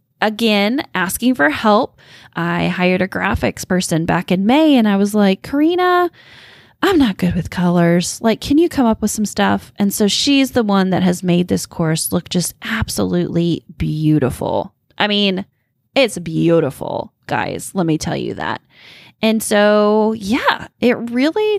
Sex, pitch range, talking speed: female, 175-230 Hz, 165 wpm